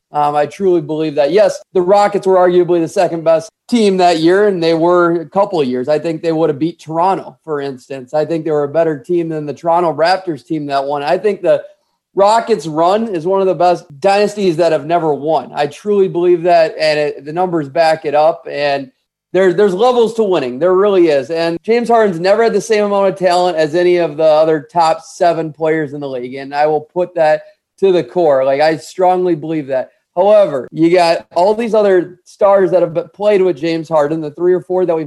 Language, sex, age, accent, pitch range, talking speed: English, male, 30-49, American, 160-200 Hz, 230 wpm